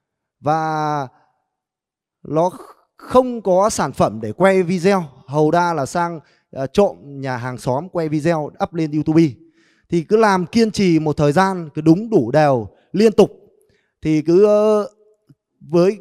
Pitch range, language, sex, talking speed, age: 140-180 Hz, Vietnamese, male, 150 wpm, 20-39